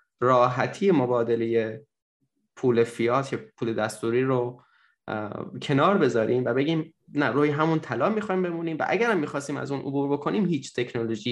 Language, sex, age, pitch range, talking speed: Persian, male, 10-29, 115-145 Hz, 145 wpm